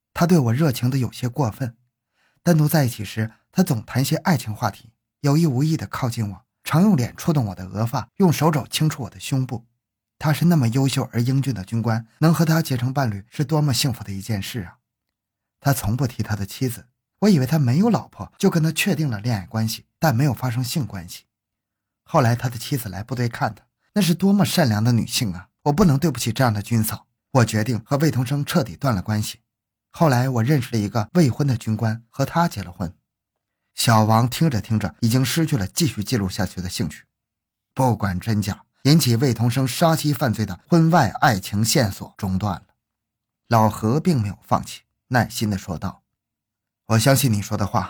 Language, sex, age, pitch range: Chinese, male, 20-39, 105-140 Hz